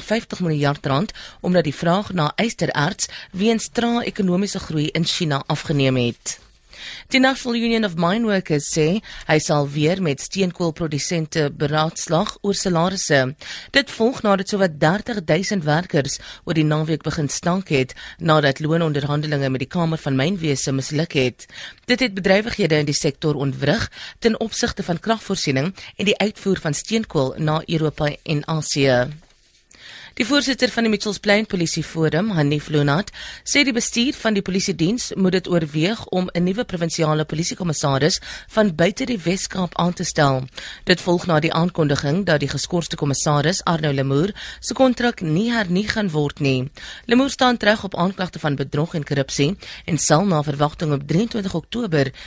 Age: 30-49